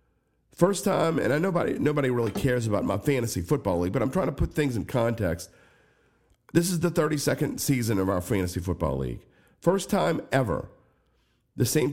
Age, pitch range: 50-69, 95-140 Hz